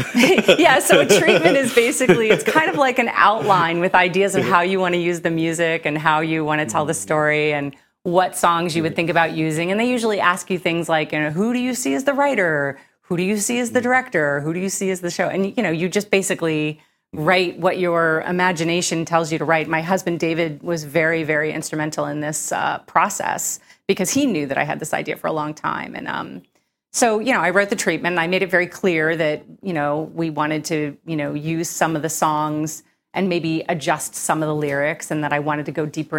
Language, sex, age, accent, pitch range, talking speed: English, female, 30-49, American, 155-180 Hz, 240 wpm